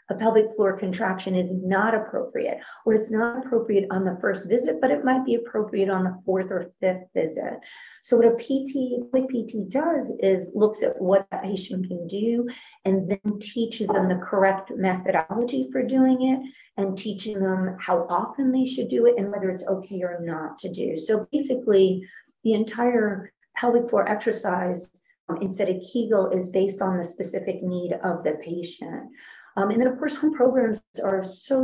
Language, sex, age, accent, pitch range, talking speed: English, female, 40-59, American, 185-235 Hz, 185 wpm